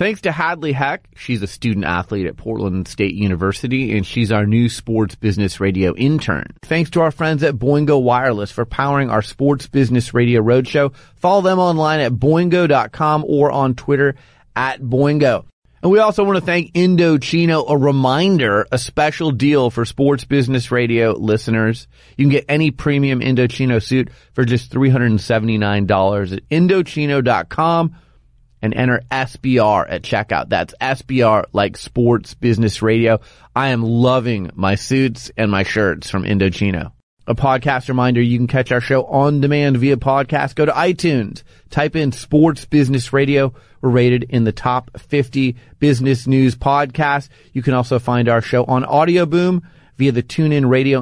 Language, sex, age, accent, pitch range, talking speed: English, male, 30-49, American, 115-145 Hz, 160 wpm